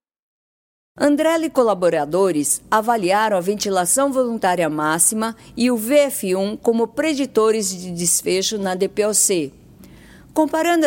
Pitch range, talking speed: 180-245 Hz, 100 wpm